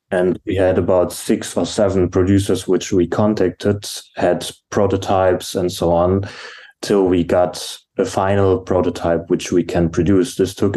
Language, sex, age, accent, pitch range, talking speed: English, male, 20-39, German, 90-105 Hz, 155 wpm